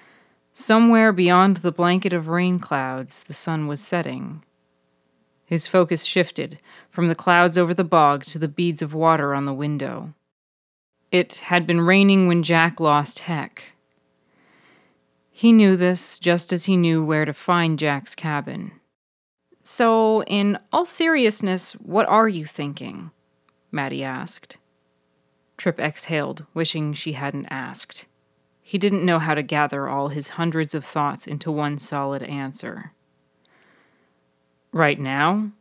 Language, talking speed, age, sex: English, 135 wpm, 30-49, female